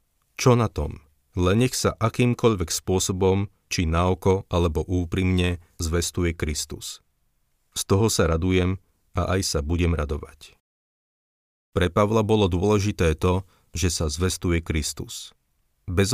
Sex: male